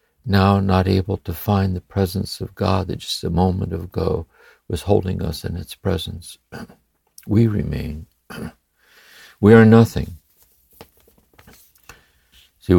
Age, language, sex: 60-79, English, male